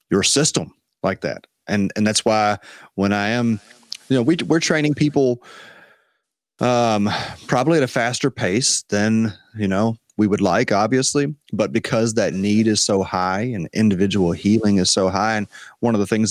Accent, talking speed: American, 175 wpm